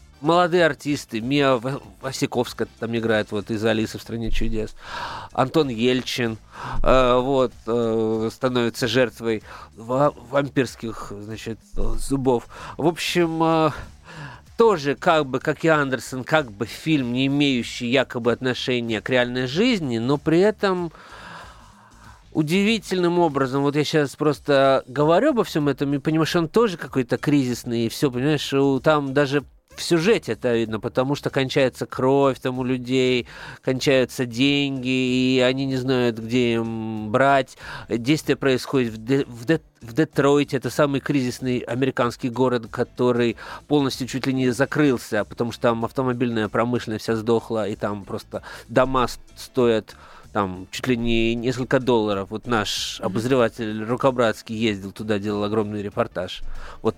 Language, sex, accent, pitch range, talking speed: Russian, male, native, 115-140 Hz, 135 wpm